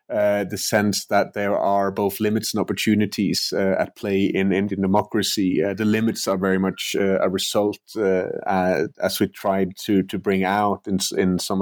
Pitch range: 90-100 Hz